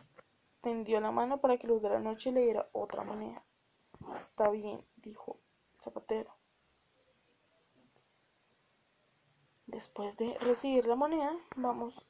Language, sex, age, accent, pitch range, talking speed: Spanish, female, 10-29, Colombian, 210-250 Hz, 120 wpm